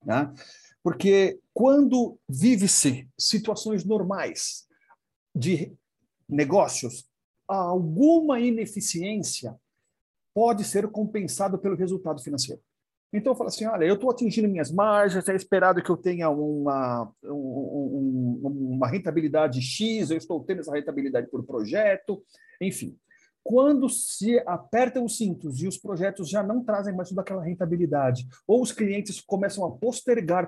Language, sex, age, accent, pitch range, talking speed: Portuguese, male, 50-69, Brazilian, 150-215 Hz, 125 wpm